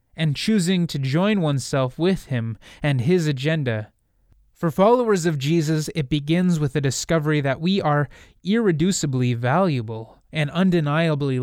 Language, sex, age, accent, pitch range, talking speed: English, male, 20-39, American, 130-165 Hz, 135 wpm